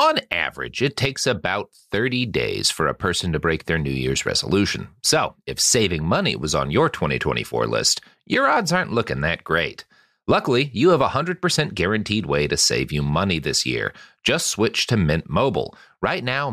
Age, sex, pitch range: 40-59, male, 95-125 Hz